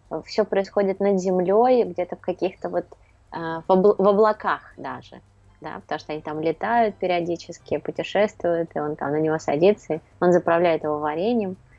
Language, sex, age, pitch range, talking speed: Russian, female, 20-39, 165-195 Hz, 160 wpm